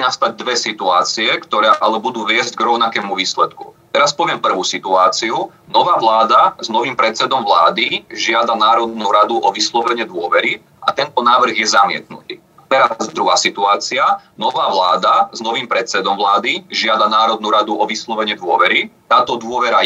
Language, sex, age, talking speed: Slovak, male, 30-49, 145 wpm